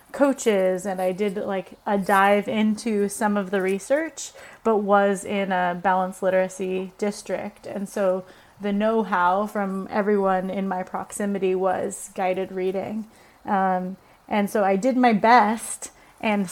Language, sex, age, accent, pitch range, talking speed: English, female, 30-49, American, 190-215 Hz, 140 wpm